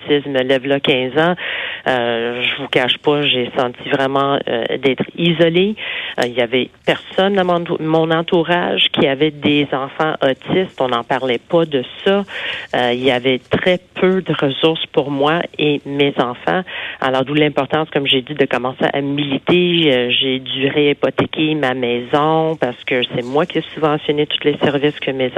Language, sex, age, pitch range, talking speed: French, female, 40-59, 135-160 Hz, 180 wpm